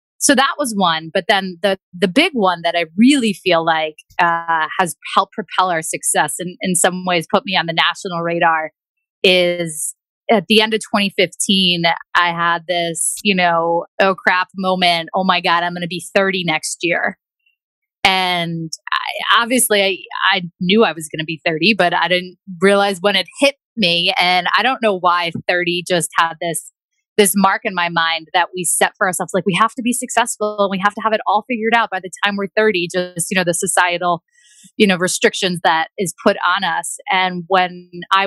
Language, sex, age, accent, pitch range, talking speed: English, female, 20-39, American, 170-205 Hz, 205 wpm